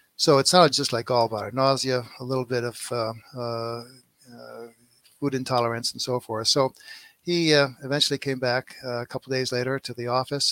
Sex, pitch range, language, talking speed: male, 120-135 Hz, English, 175 wpm